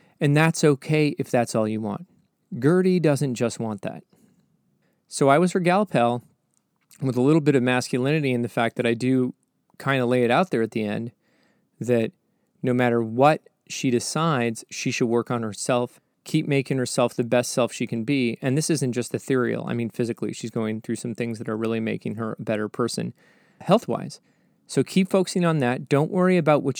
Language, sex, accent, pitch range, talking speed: English, male, American, 120-170 Hz, 200 wpm